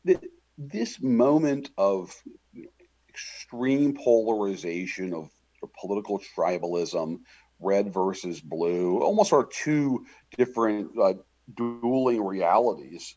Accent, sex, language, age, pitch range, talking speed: American, male, English, 50-69, 90-120 Hz, 80 wpm